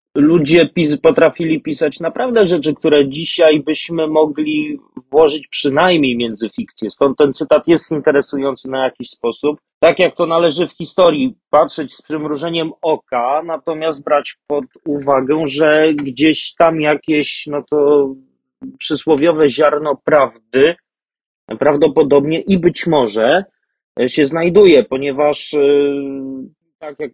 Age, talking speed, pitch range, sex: 30-49, 115 wpm, 140-165 Hz, male